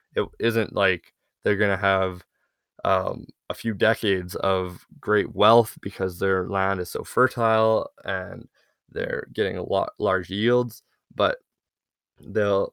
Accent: American